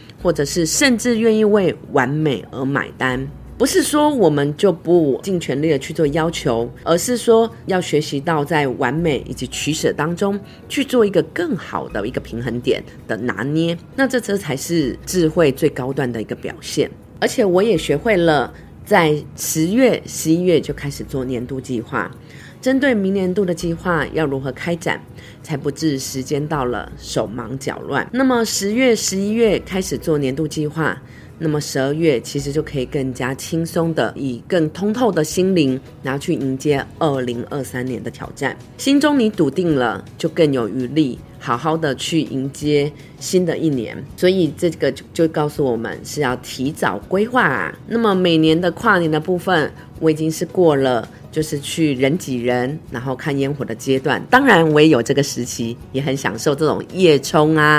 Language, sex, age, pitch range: Chinese, female, 30-49, 135-175 Hz